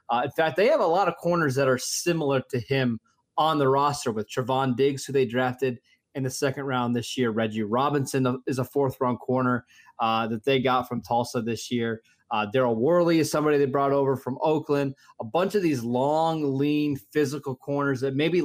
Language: English